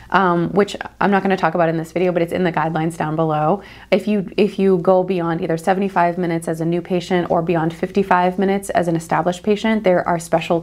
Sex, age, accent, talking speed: female, 30-49, American, 230 wpm